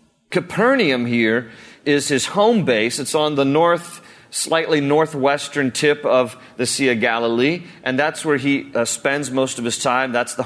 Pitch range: 140-195 Hz